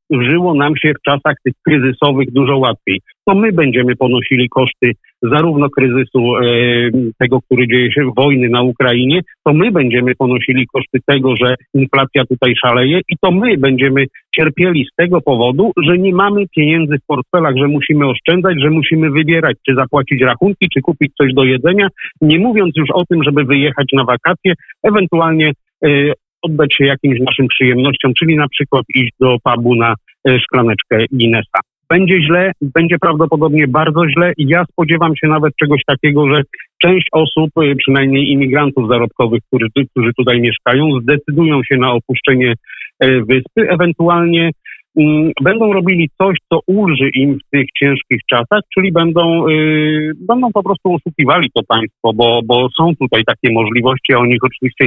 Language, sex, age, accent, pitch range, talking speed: Polish, male, 50-69, native, 125-160 Hz, 155 wpm